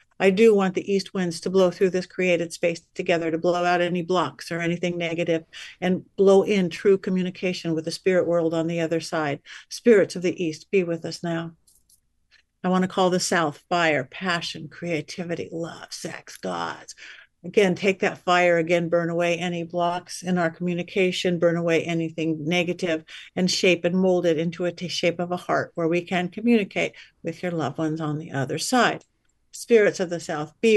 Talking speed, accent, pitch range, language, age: 190 wpm, American, 165-185 Hz, English, 50-69